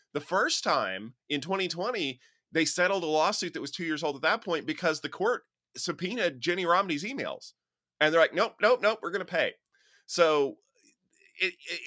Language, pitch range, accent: English, 130-175 Hz, American